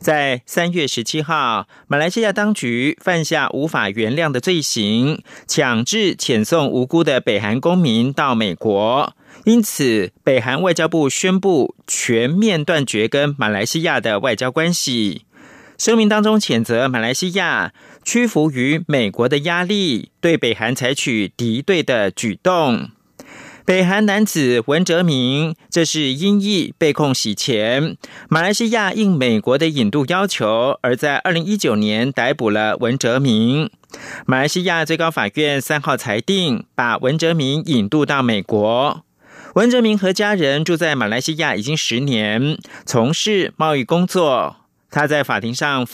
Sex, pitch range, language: male, 125-185 Hz, French